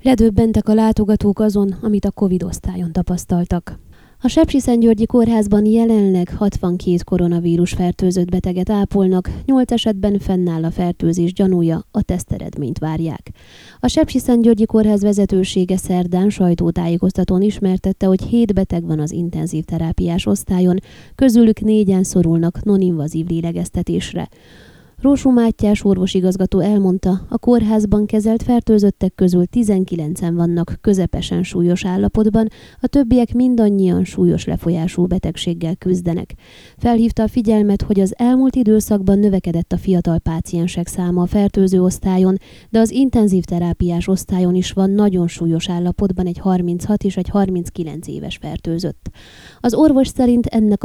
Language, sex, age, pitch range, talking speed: Hungarian, female, 20-39, 180-215 Hz, 120 wpm